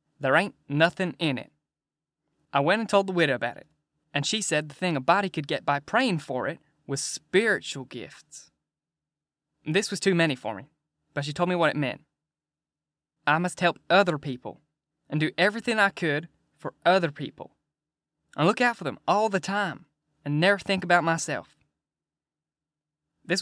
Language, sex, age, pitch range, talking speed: English, male, 10-29, 145-180 Hz, 175 wpm